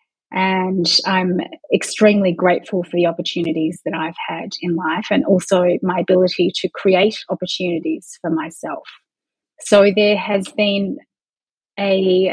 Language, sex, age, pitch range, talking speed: English, female, 30-49, 180-205 Hz, 125 wpm